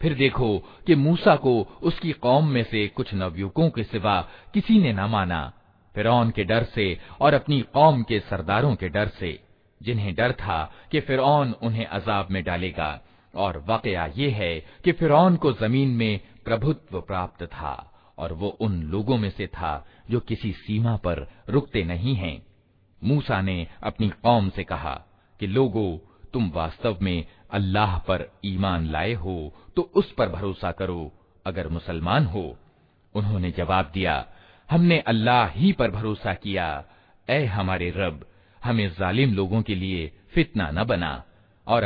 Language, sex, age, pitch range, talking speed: Hindi, male, 50-69, 95-125 Hz, 155 wpm